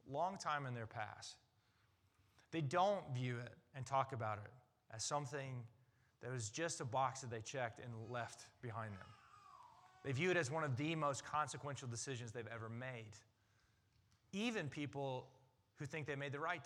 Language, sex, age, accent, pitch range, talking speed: English, male, 30-49, American, 110-145 Hz, 175 wpm